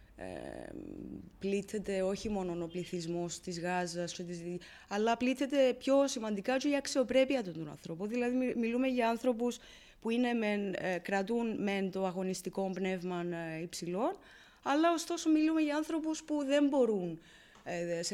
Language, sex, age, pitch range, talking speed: Greek, female, 20-39, 180-265 Hz, 130 wpm